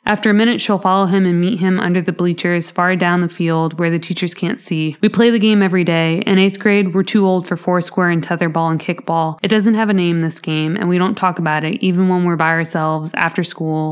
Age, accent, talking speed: 20-39, American, 255 wpm